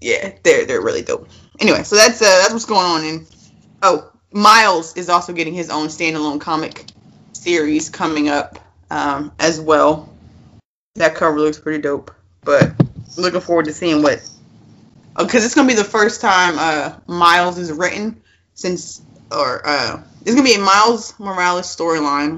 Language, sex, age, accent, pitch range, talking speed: English, female, 20-39, American, 150-215 Hz, 165 wpm